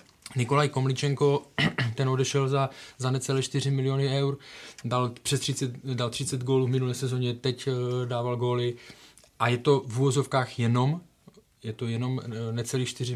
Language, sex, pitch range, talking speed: Czech, male, 120-135 Hz, 140 wpm